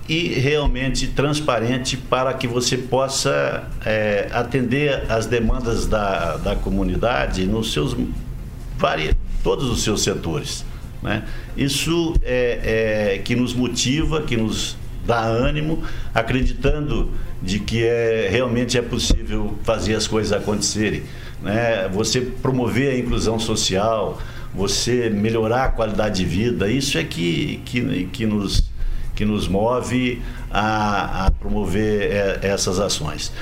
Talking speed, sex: 125 wpm, male